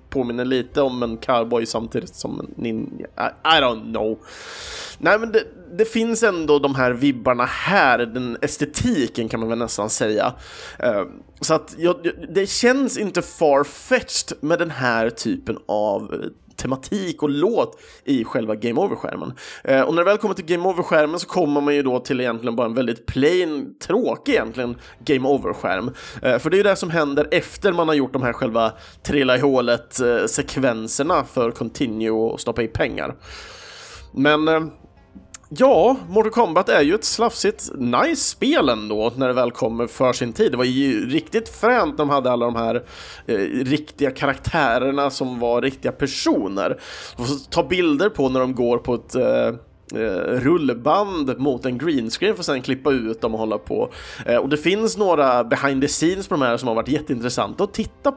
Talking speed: 180 wpm